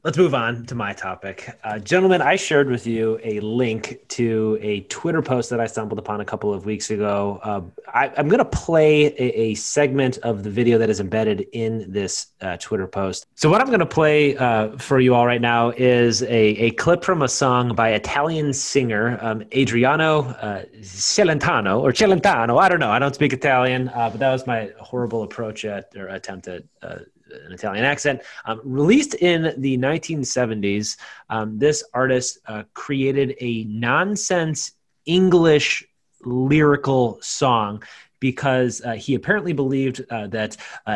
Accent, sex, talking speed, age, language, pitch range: American, male, 175 wpm, 30-49, English, 110-150 Hz